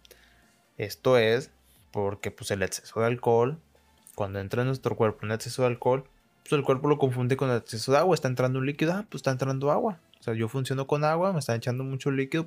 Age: 20-39